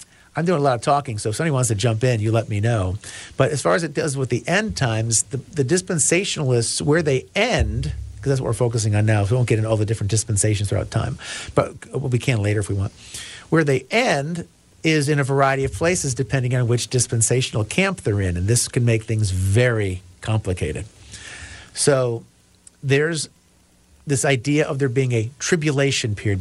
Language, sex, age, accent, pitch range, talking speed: English, male, 50-69, American, 110-140 Hz, 210 wpm